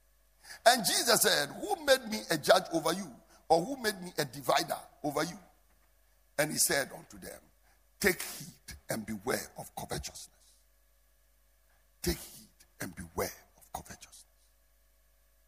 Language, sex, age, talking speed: English, male, 60-79, 135 wpm